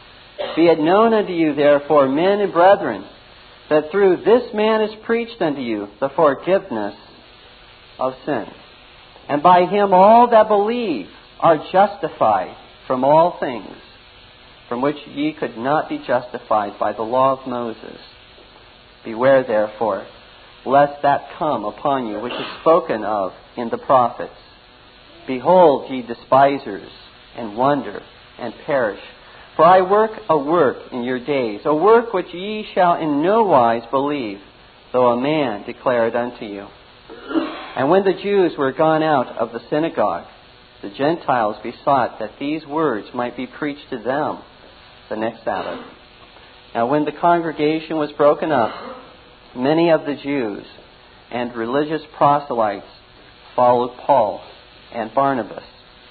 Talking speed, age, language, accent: 140 wpm, 50-69, English, American